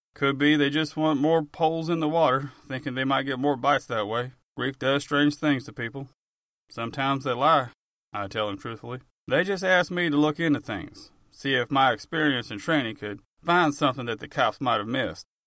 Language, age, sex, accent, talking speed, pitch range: English, 30-49, male, American, 210 wpm, 120-155 Hz